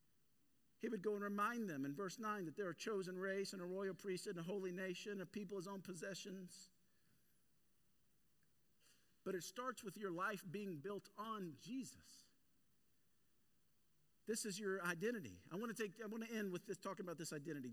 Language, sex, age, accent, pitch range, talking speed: English, male, 50-69, American, 175-205 Hz, 170 wpm